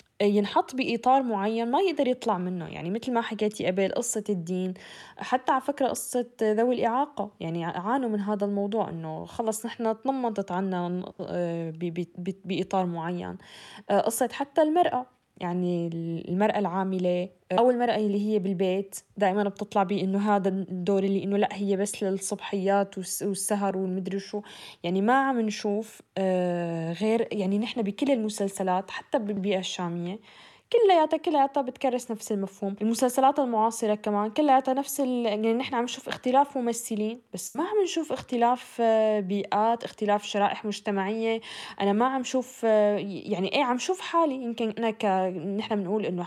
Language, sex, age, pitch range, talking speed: Arabic, female, 10-29, 190-245 Hz, 145 wpm